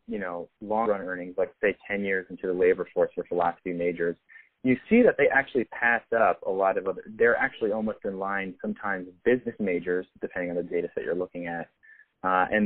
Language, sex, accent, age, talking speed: English, male, American, 30-49, 210 wpm